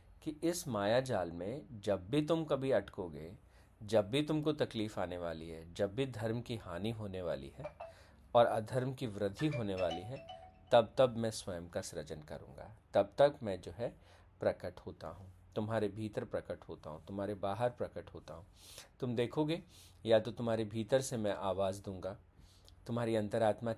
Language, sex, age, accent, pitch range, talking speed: Hindi, male, 40-59, native, 90-120 Hz, 175 wpm